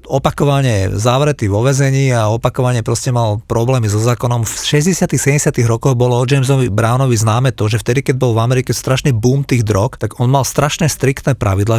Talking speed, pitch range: 185 wpm, 115-140 Hz